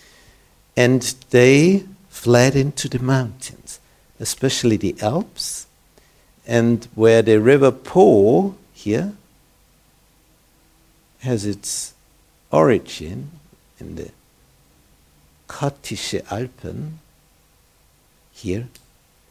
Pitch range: 90-130 Hz